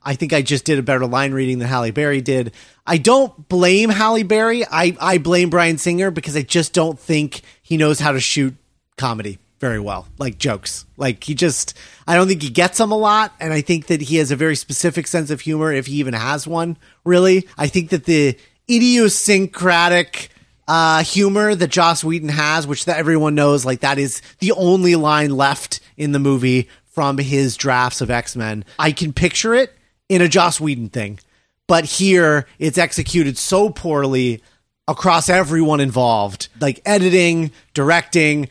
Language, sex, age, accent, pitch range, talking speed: English, male, 30-49, American, 130-175 Hz, 185 wpm